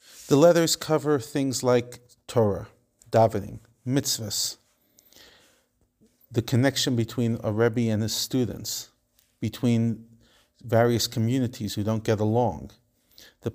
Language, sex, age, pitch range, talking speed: English, male, 40-59, 100-120 Hz, 105 wpm